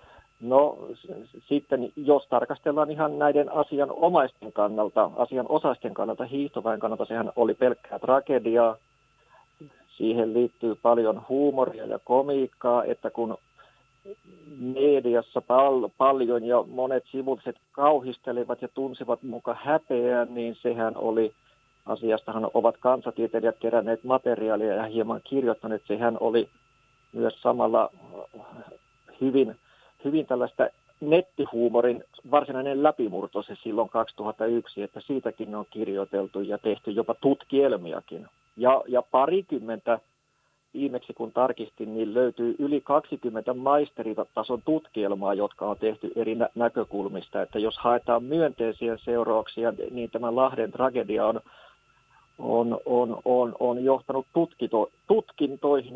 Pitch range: 115-140 Hz